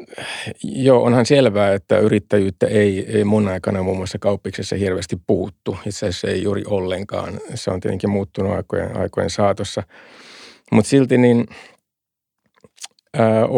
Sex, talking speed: male, 135 wpm